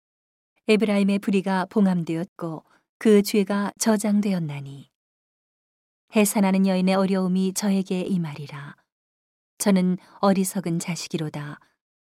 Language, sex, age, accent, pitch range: Korean, female, 40-59, native, 165-205 Hz